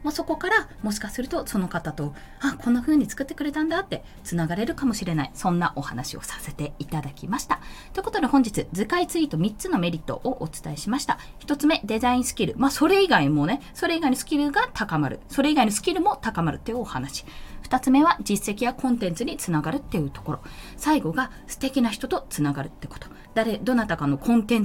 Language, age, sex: Japanese, 20-39, female